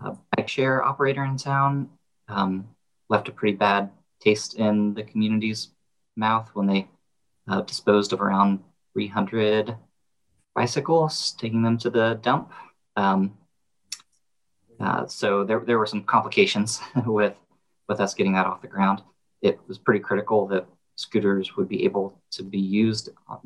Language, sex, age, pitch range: English, male, 30-49, 95-120 Hz